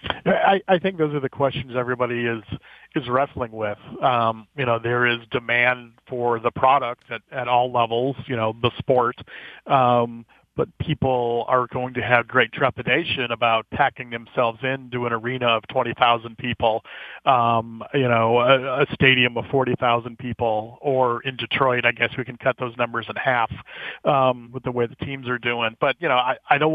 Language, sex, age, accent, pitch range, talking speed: English, male, 40-59, American, 120-135 Hz, 185 wpm